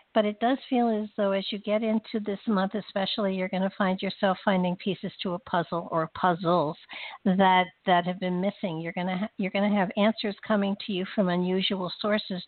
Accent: American